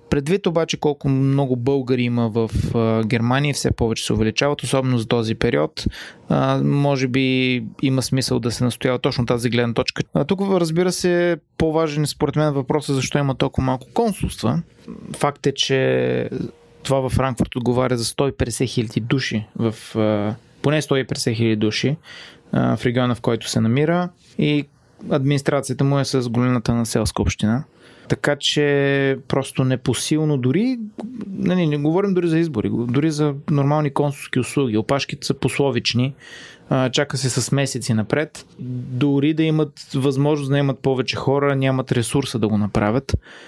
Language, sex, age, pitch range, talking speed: Bulgarian, male, 20-39, 125-150 Hz, 155 wpm